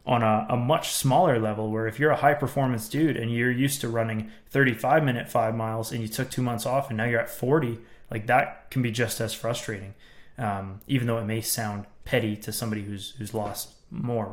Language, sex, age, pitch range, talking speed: English, male, 20-39, 105-125 Hz, 220 wpm